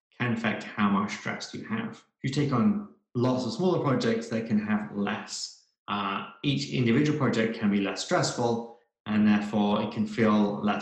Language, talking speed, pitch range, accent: English, 175 wpm, 105-130 Hz, British